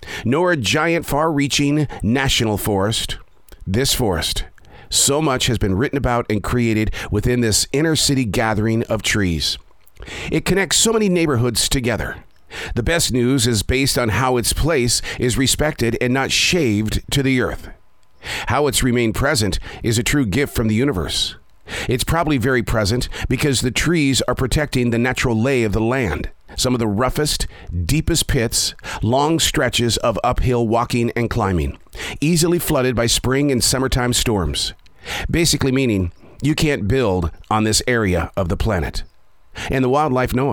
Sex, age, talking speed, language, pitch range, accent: male, 50-69, 160 wpm, English, 105-135 Hz, American